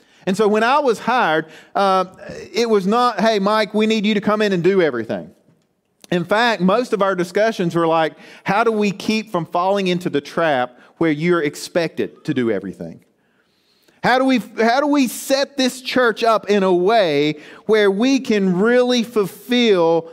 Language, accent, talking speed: English, American, 185 wpm